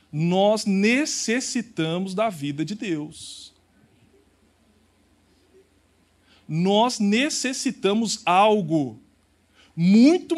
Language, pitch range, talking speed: Portuguese, 150-215 Hz, 60 wpm